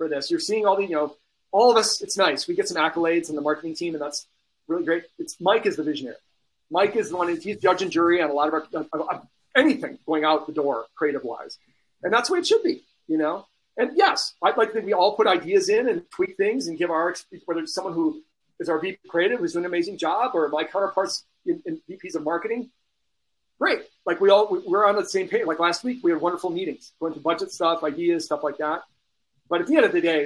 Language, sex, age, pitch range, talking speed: English, male, 40-59, 150-205 Hz, 255 wpm